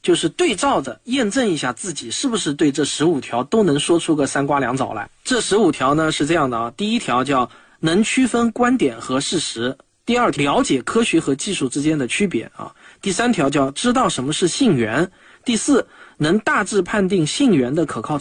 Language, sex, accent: Chinese, male, native